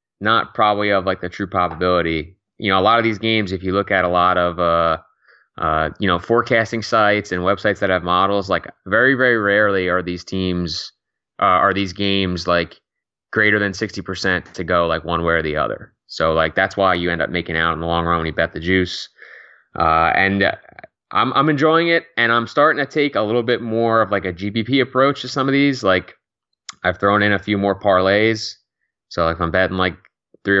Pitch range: 90-110 Hz